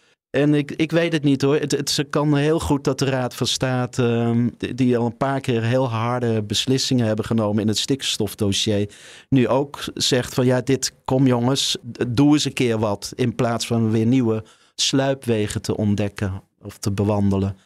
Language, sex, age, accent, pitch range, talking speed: Dutch, male, 50-69, Dutch, 105-130 Hz, 195 wpm